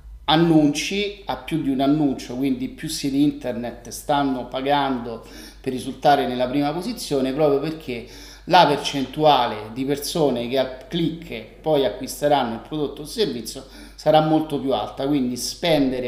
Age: 30-49